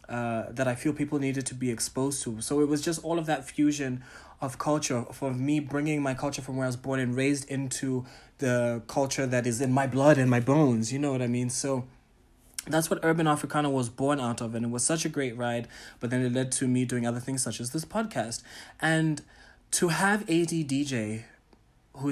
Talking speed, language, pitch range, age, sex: 225 wpm, English, 125-150 Hz, 20-39, male